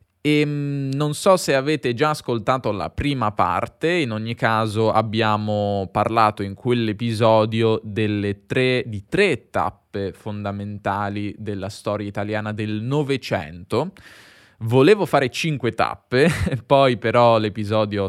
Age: 10-29